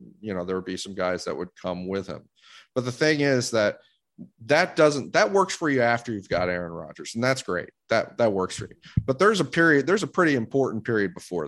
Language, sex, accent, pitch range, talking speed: English, male, American, 95-125 Hz, 240 wpm